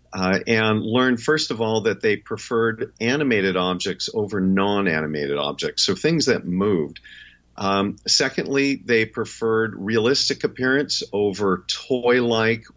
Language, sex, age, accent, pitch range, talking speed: English, male, 50-69, American, 95-120 Hz, 120 wpm